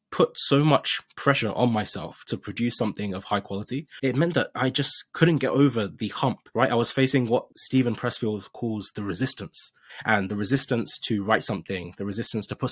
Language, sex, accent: English, male, British